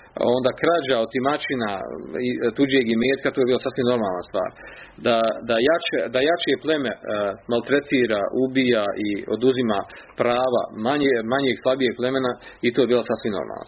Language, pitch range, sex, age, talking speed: Croatian, 115-140 Hz, male, 40-59, 145 wpm